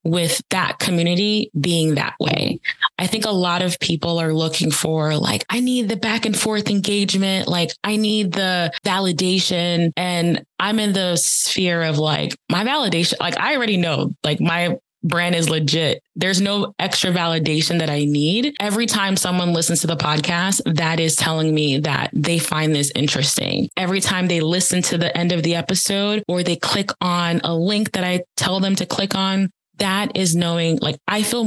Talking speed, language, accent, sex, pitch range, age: 185 wpm, English, American, female, 165-195 Hz, 20-39